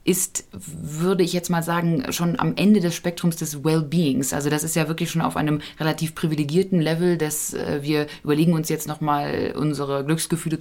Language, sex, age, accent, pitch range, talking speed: German, female, 20-39, German, 150-175 Hz, 180 wpm